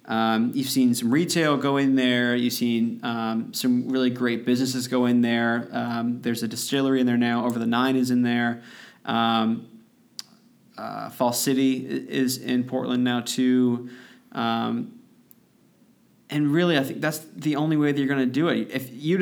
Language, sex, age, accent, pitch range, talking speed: English, male, 20-39, American, 120-135 Hz, 180 wpm